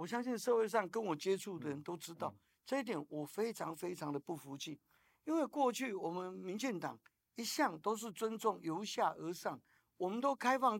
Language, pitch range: Chinese, 160-245 Hz